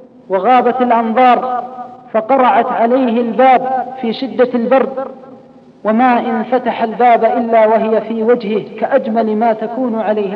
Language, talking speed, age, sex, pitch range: Arabic, 115 wpm, 40-59, female, 220-245 Hz